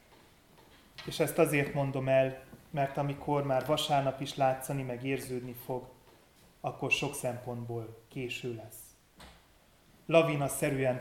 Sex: male